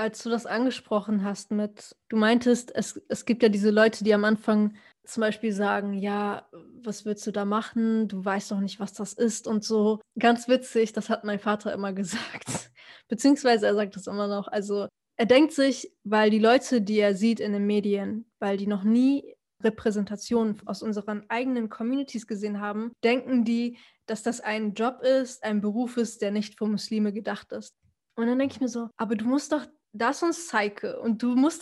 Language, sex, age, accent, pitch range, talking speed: German, female, 10-29, German, 215-245 Hz, 200 wpm